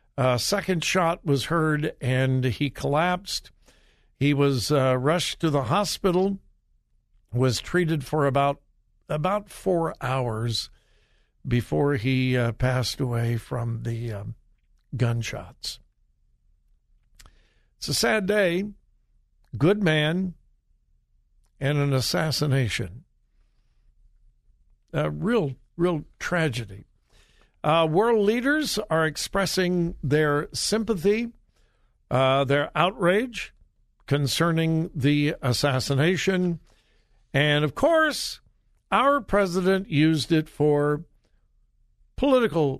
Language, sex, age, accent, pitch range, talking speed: English, male, 60-79, American, 130-180 Hz, 95 wpm